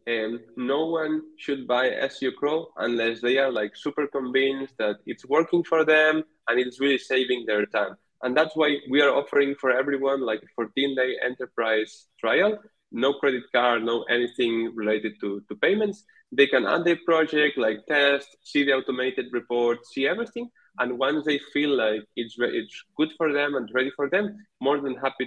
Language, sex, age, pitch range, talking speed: English, male, 20-39, 120-155 Hz, 185 wpm